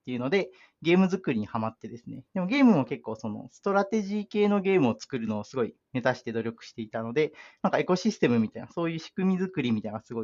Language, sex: Japanese, male